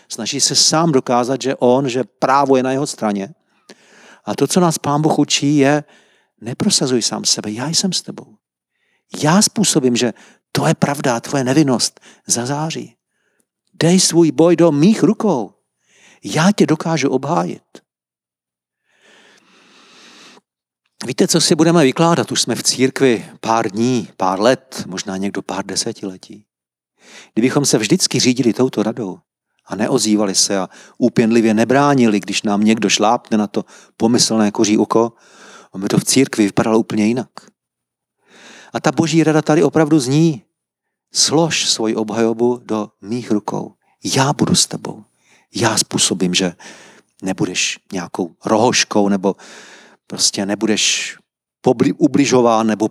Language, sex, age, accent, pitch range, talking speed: Czech, male, 50-69, native, 105-150 Hz, 135 wpm